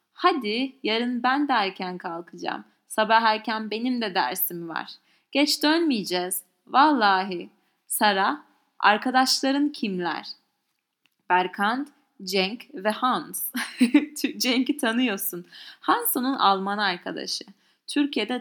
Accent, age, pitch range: Turkish, 30-49, 190-270 Hz